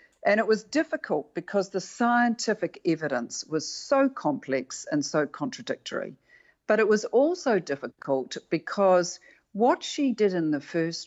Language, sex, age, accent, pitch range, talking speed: English, female, 50-69, Australian, 155-220 Hz, 140 wpm